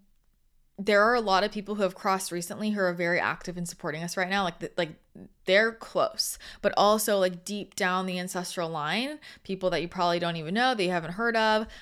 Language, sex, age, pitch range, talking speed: English, female, 20-39, 180-225 Hz, 225 wpm